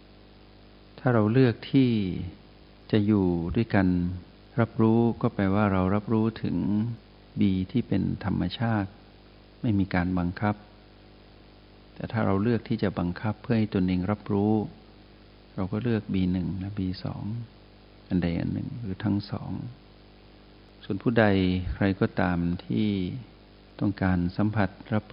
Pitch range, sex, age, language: 95-110 Hz, male, 60-79, Thai